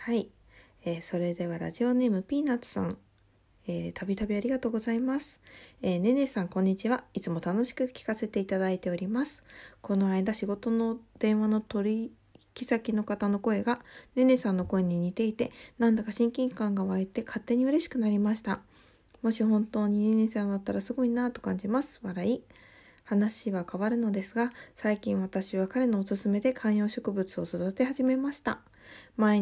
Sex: female